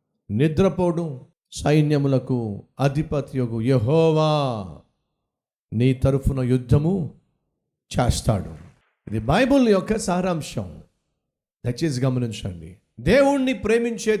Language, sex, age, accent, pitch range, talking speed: Telugu, male, 50-69, native, 140-205 Hz, 70 wpm